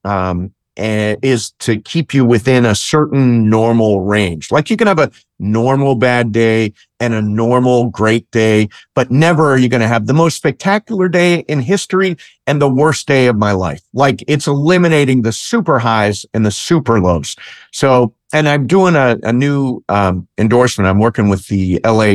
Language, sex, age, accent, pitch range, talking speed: English, male, 50-69, American, 105-135 Hz, 180 wpm